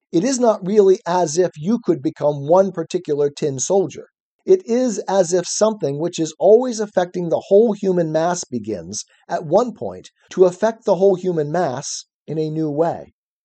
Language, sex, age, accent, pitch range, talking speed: English, male, 50-69, American, 160-205 Hz, 180 wpm